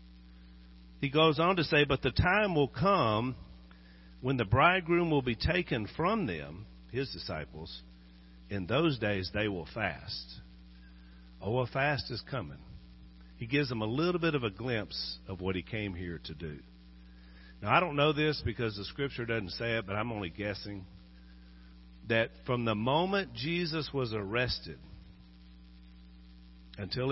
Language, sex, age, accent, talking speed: English, male, 50-69, American, 155 wpm